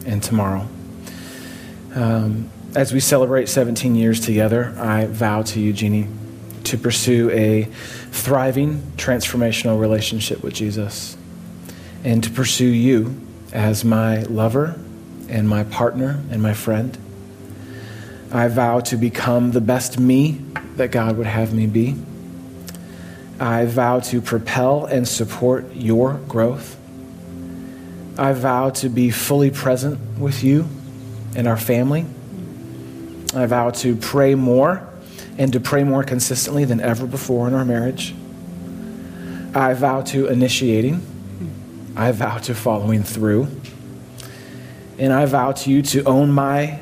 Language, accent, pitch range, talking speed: English, American, 110-130 Hz, 130 wpm